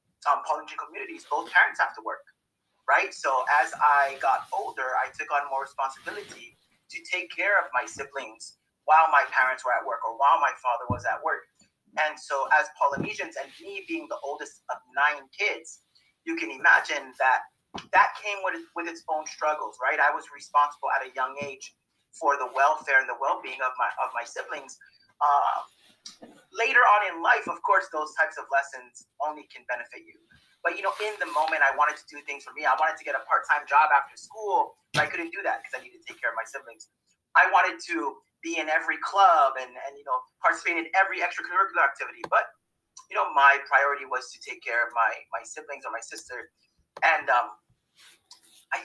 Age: 30-49